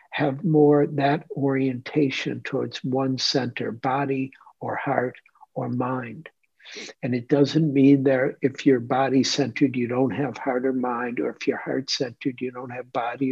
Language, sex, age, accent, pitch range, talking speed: English, male, 60-79, American, 125-145 Hz, 155 wpm